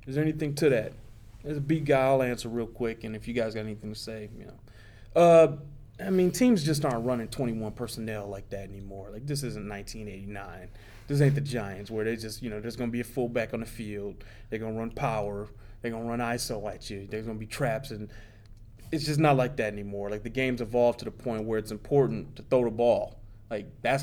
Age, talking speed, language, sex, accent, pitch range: 20-39, 240 wpm, English, male, American, 110-160 Hz